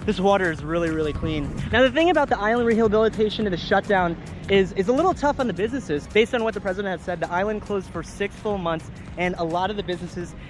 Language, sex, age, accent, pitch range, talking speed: Hindi, male, 30-49, American, 165-200 Hz, 250 wpm